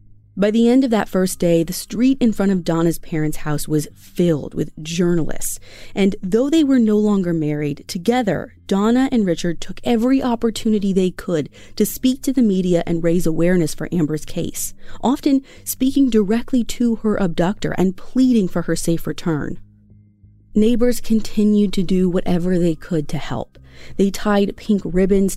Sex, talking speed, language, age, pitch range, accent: female, 170 wpm, English, 30-49, 155-215 Hz, American